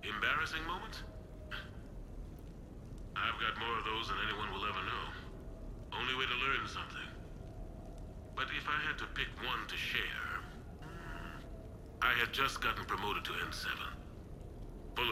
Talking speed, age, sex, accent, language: 135 wpm, 40-59, male, American, English